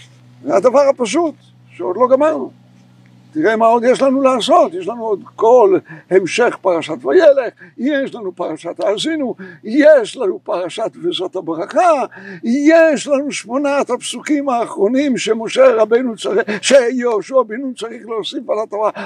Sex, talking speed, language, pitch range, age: male, 135 wpm, Hebrew, 200-295 Hz, 60-79